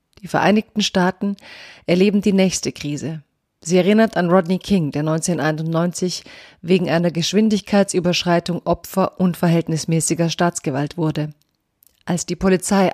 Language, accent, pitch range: German, German, 165-190 Hz